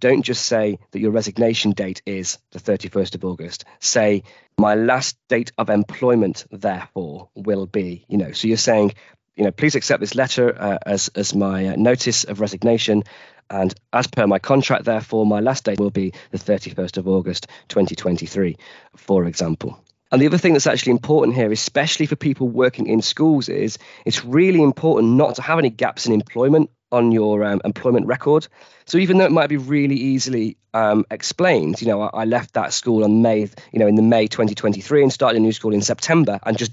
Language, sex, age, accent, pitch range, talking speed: English, male, 20-39, British, 100-125 Hz, 200 wpm